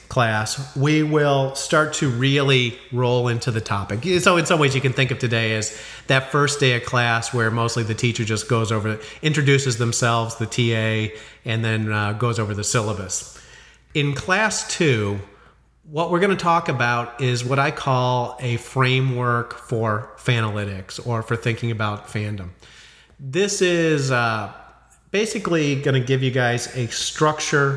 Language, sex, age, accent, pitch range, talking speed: English, male, 40-59, American, 115-145 Hz, 165 wpm